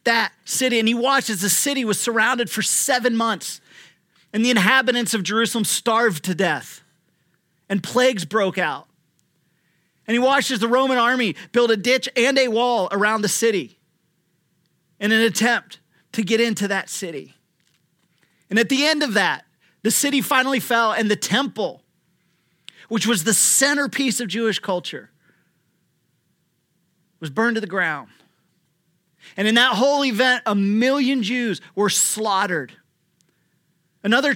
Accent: American